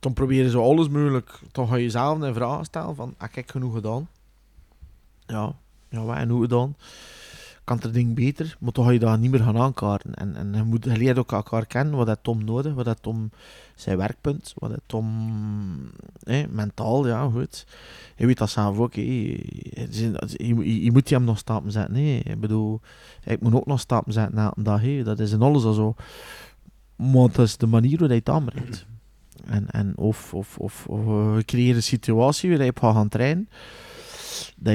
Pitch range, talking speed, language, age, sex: 110-135 Hz, 195 wpm, Dutch, 20-39, male